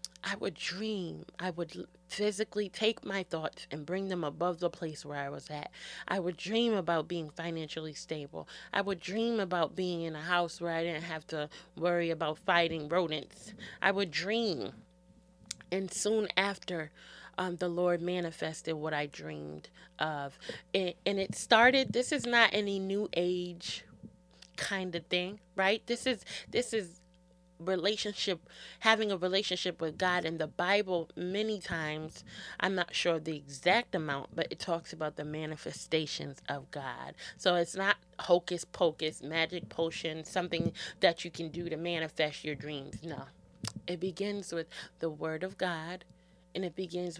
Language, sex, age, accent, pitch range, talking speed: English, female, 20-39, American, 160-190 Hz, 160 wpm